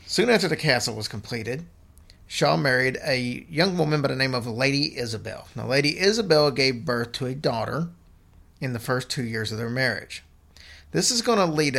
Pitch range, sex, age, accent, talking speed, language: 105-145 Hz, male, 40-59, American, 195 wpm, English